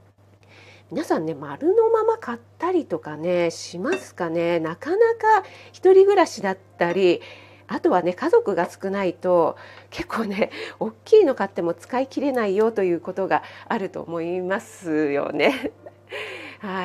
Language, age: Japanese, 40-59